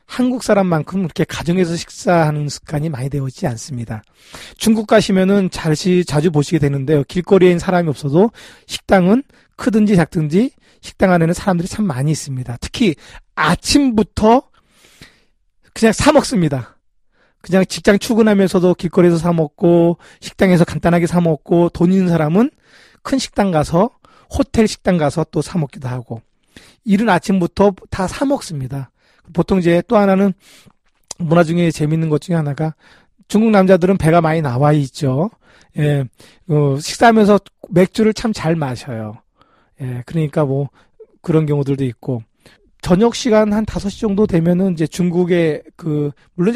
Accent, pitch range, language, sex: native, 150-205 Hz, Korean, male